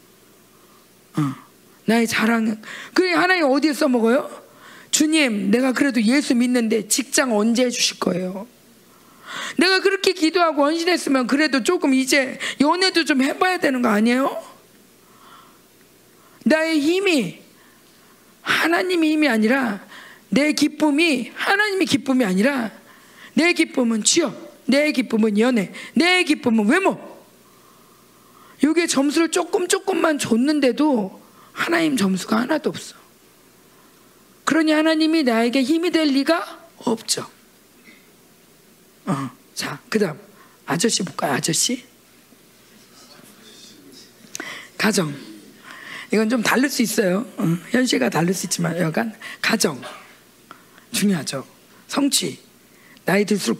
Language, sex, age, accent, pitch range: Korean, female, 40-59, native, 225-315 Hz